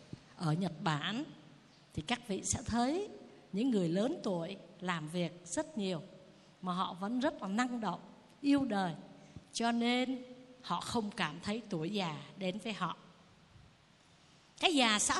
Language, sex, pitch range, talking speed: Vietnamese, female, 195-280 Hz, 155 wpm